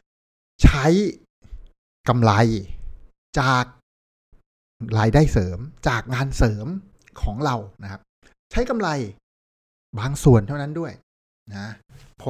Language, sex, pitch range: Thai, male, 105-145 Hz